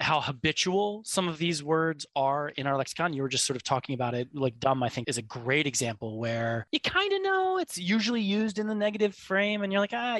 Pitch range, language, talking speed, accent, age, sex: 125-175 Hz, English, 245 wpm, American, 20-39, male